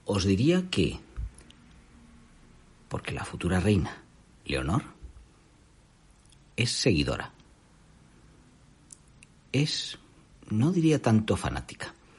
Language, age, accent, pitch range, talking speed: Spanish, 50-69, Spanish, 115-175 Hz, 75 wpm